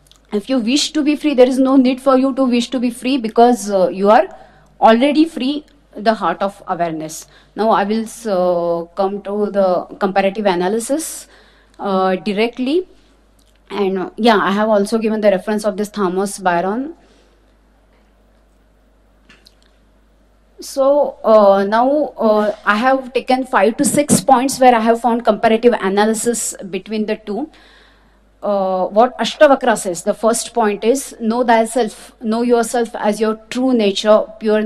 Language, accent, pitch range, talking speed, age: English, Indian, 205-260 Hz, 150 wpm, 30-49